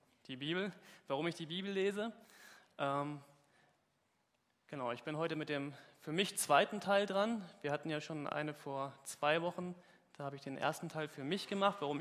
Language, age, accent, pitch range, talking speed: German, 20-39, German, 140-180 Hz, 185 wpm